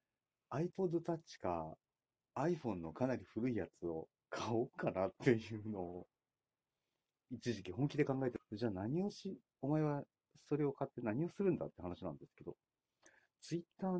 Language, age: Japanese, 40-59